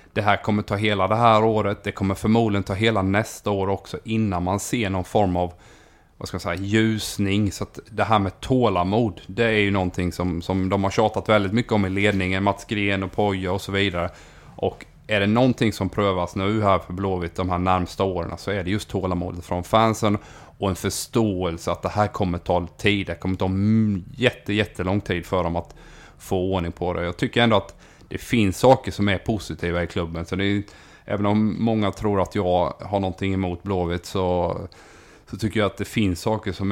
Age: 30-49